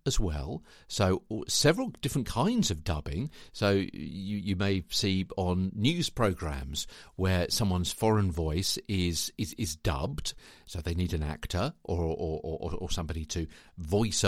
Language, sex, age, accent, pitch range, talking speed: English, male, 50-69, British, 90-130 Hz, 150 wpm